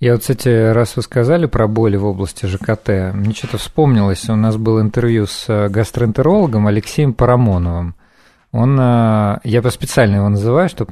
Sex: male